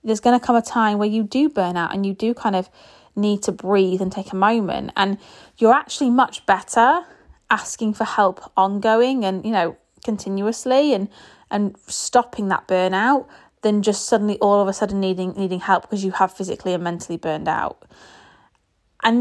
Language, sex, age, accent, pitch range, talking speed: English, female, 30-49, British, 195-250 Hz, 185 wpm